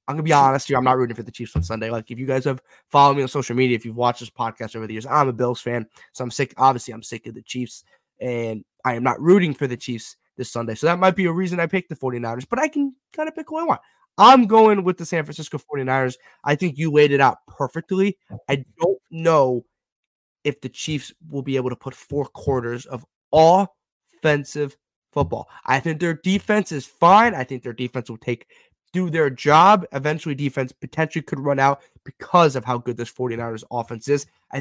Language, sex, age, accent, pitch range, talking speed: English, male, 20-39, American, 125-165 Hz, 230 wpm